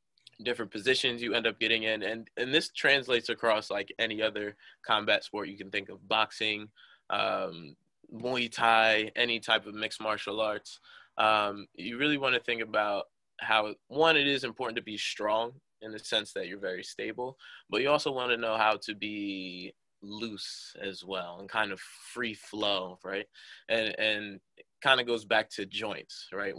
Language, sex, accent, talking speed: English, male, American, 180 wpm